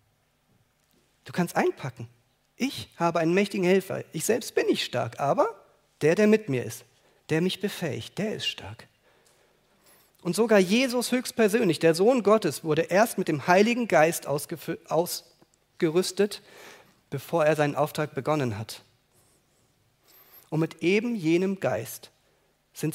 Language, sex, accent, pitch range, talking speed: German, male, German, 140-205 Hz, 135 wpm